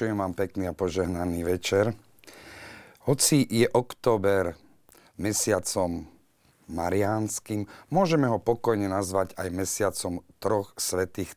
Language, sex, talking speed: Slovak, male, 105 wpm